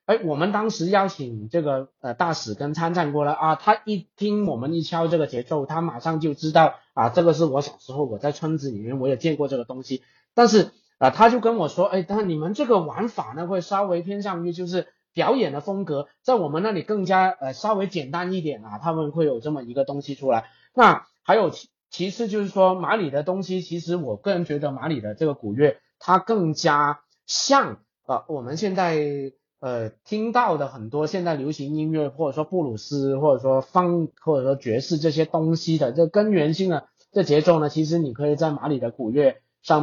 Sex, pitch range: male, 145-185 Hz